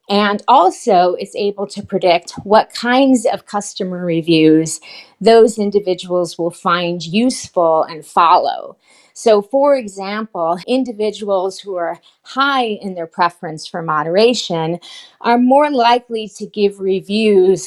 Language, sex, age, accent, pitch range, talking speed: English, female, 40-59, American, 175-220 Hz, 120 wpm